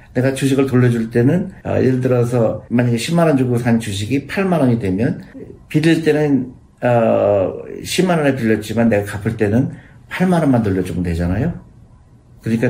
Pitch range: 110-140 Hz